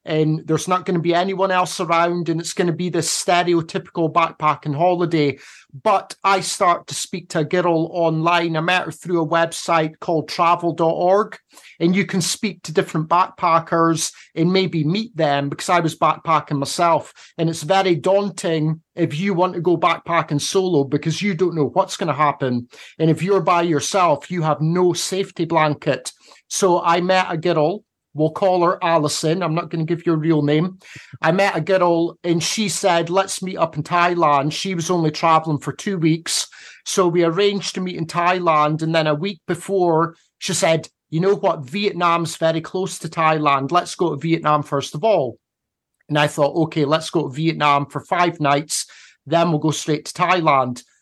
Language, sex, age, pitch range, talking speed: English, male, 30-49, 155-180 Hz, 190 wpm